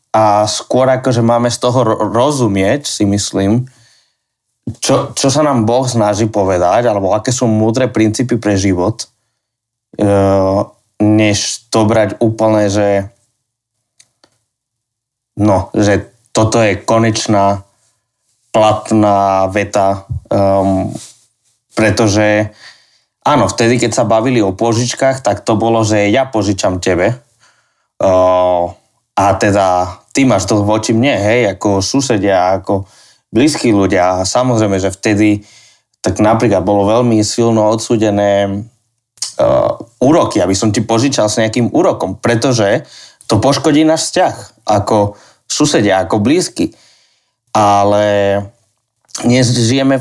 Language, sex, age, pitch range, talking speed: Slovak, male, 20-39, 100-120 Hz, 115 wpm